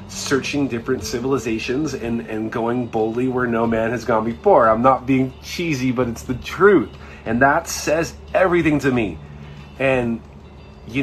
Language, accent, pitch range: English, American, 110-140 Hz